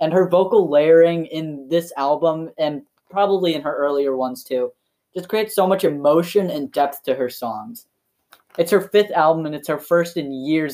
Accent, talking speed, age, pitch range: American, 190 wpm, 10-29, 140-175 Hz